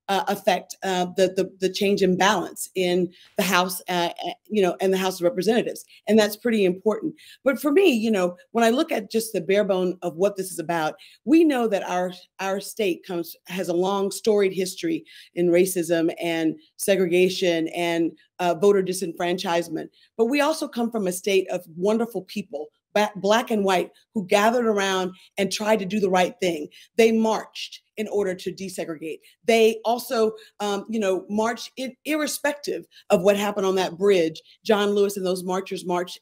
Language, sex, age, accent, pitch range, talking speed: English, female, 40-59, American, 180-215 Hz, 180 wpm